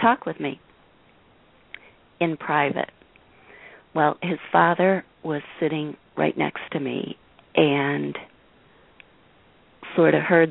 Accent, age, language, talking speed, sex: American, 40-59, English, 105 wpm, female